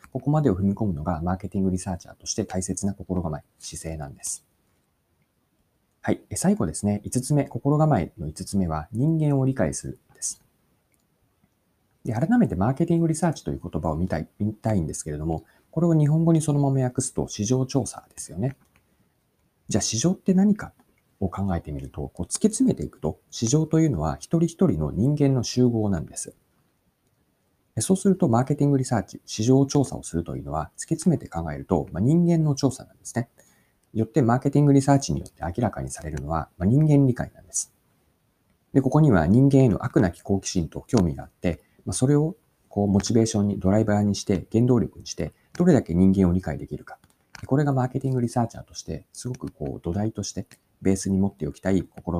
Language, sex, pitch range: Japanese, male, 90-140 Hz